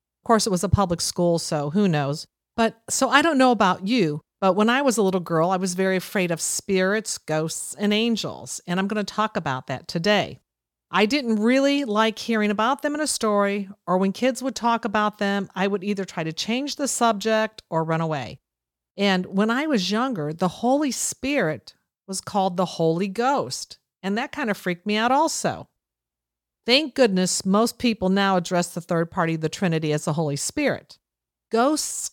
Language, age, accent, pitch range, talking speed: English, 50-69, American, 165-230 Hz, 200 wpm